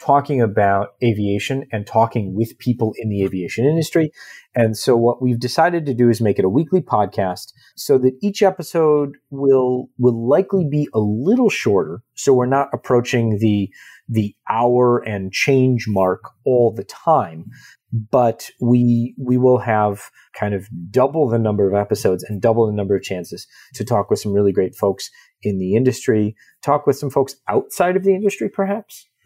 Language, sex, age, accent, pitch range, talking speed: English, male, 30-49, American, 105-135 Hz, 175 wpm